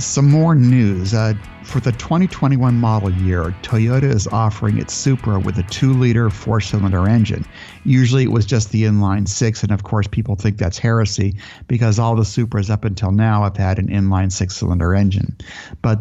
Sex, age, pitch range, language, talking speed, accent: male, 50-69, 100-115 Hz, English, 185 wpm, American